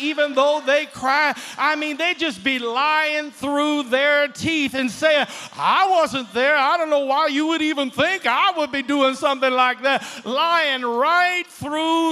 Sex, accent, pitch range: male, American, 280-330 Hz